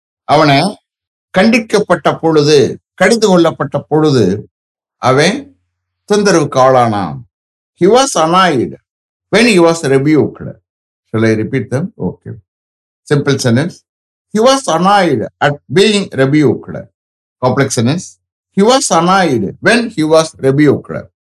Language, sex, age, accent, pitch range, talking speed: English, male, 60-79, Indian, 110-185 Hz, 80 wpm